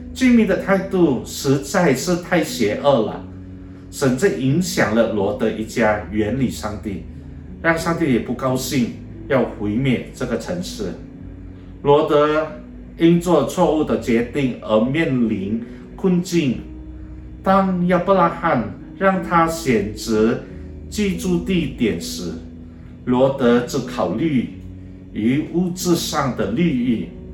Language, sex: Indonesian, male